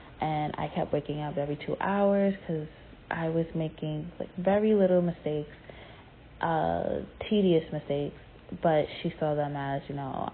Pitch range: 150-180 Hz